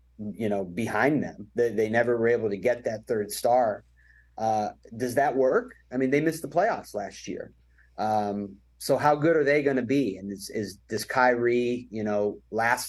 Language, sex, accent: English, male, American